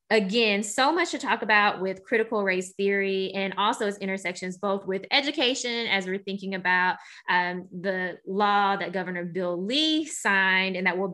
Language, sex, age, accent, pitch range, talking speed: English, female, 20-39, American, 185-230 Hz, 170 wpm